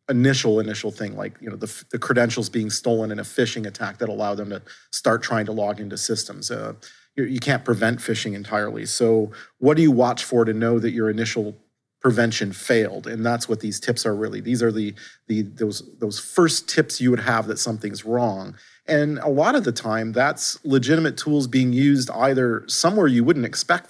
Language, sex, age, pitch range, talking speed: English, male, 40-59, 110-135 Hz, 205 wpm